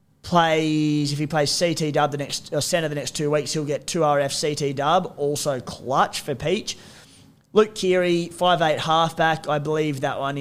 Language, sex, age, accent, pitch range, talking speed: English, male, 20-39, Australian, 140-160 Hz, 200 wpm